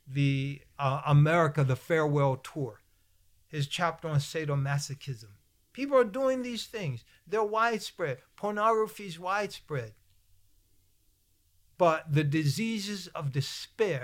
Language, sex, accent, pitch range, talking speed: English, male, American, 115-185 Hz, 105 wpm